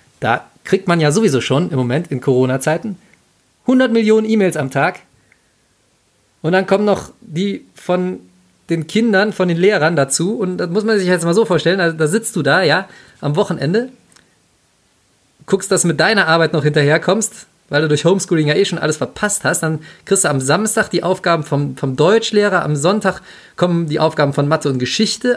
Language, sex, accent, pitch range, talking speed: German, male, German, 145-190 Hz, 195 wpm